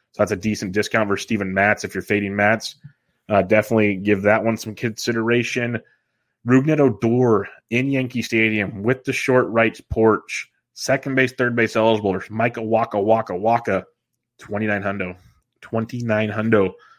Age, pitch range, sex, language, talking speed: 20-39, 105-125 Hz, male, English, 140 wpm